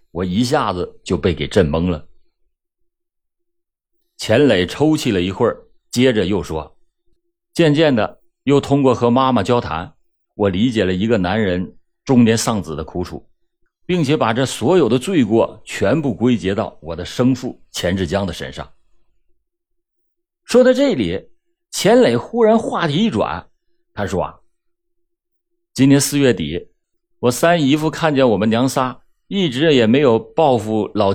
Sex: male